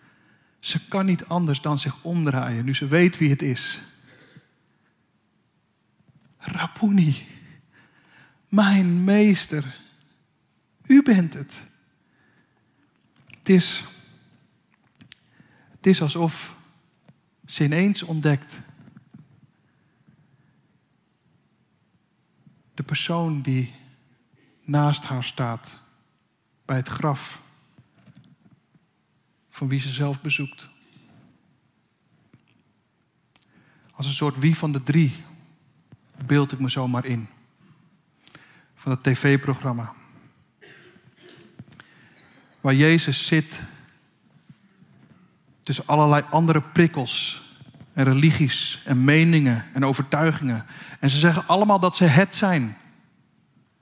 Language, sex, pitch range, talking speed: Dutch, male, 135-165 Hz, 85 wpm